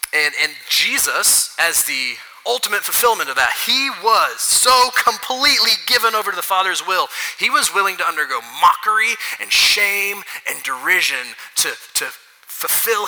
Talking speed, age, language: 145 wpm, 30-49, English